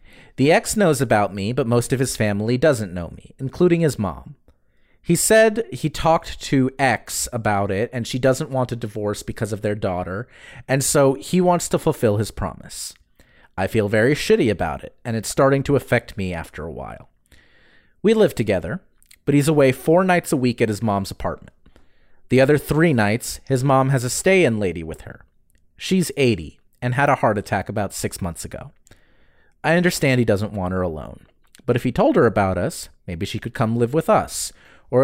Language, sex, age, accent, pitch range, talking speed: English, male, 30-49, American, 100-140 Hz, 200 wpm